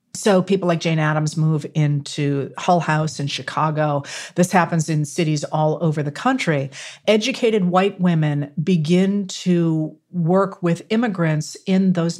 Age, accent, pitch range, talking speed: 50-69, American, 155-190 Hz, 145 wpm